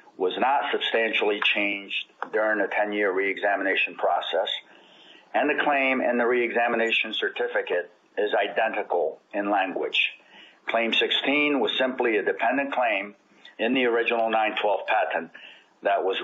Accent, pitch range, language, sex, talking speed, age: American, 110-145 Hz, English, male, 125 wpm, 50-69